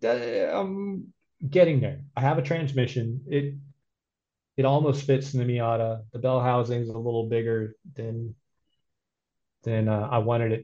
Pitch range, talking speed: 110-130 Hz, 150 wpm